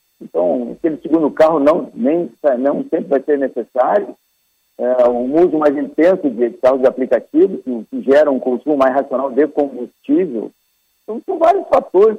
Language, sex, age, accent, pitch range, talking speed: Portuguese, male, 50-69, Brazilian, 130-215 Hz, 165 wpm